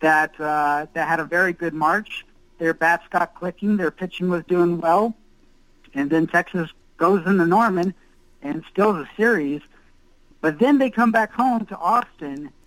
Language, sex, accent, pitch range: English, male, American, 160-210 Hz